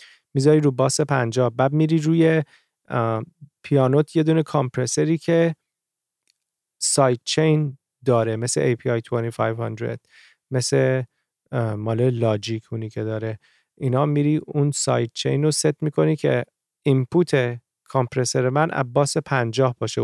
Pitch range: 125-150 Hz